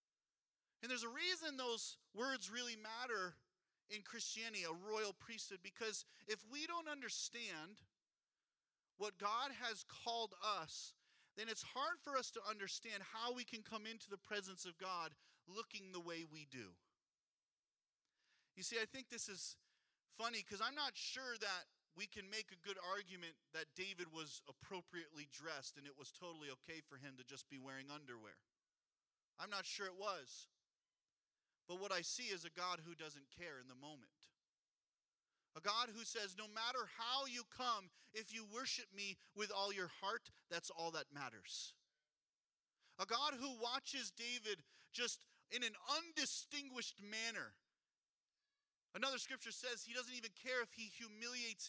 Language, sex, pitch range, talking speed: English, male, 175-235 Hz, 160 wpm